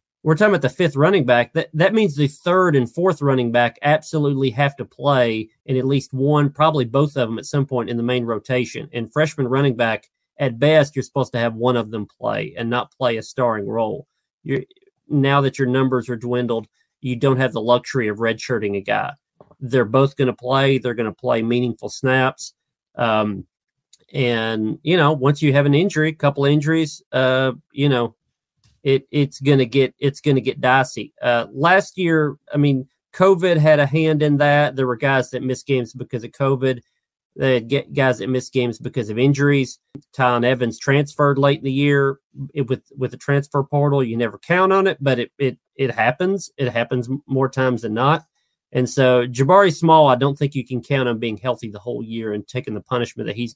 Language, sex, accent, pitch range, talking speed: English, male, American, 125-145 Hz, 205 wpm